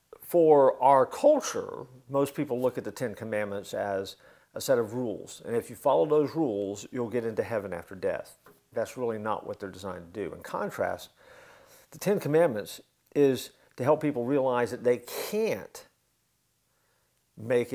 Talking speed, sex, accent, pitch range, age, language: 165 wpm, male, American, 105-160 Hz, 50-69, English